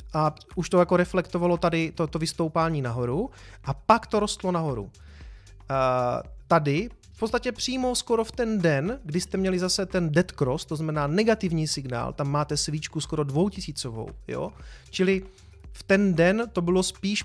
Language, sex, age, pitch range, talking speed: Czech, male, 30-49, 135-185 Hz, 165 wpm